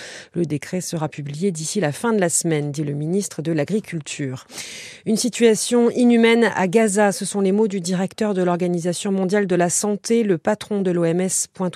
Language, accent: French, French